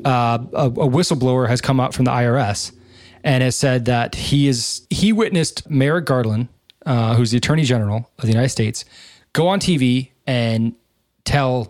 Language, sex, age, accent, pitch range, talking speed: English, male, 20-39, American, 115-140 Hz, 175 wpm